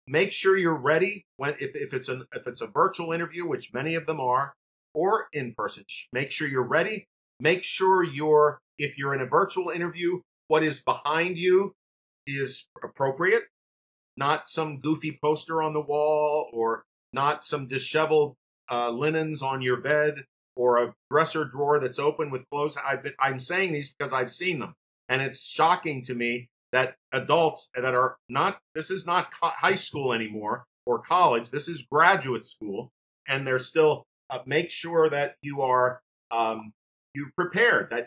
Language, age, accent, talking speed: English, 50-69, American, 170 wpm